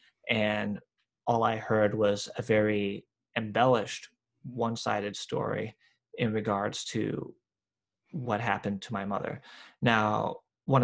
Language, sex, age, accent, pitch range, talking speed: English, male, 20-39, American, 105-120 Hz, 110 wpm